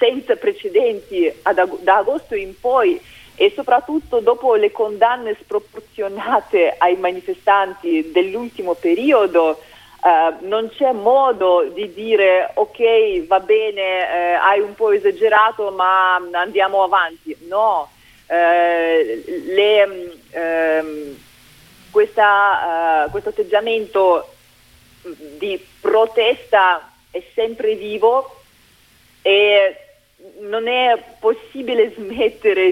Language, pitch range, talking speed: Italian, 170-265 Hz, 90 wpm